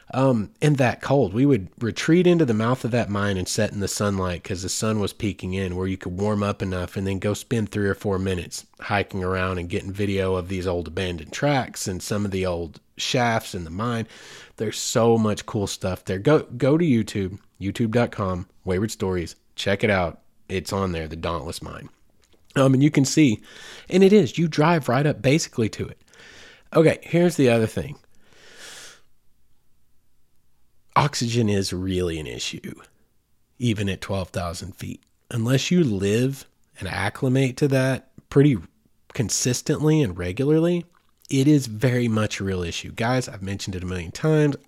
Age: 30-49